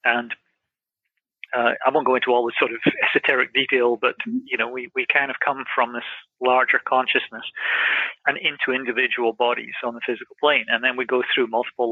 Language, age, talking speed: English, 40-59, 190 wpm